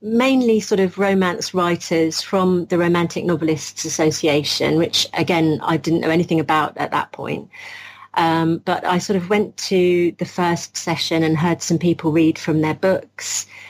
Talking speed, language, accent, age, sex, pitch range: 165 wpm, English, British, 40-59, female, 165-190 Hz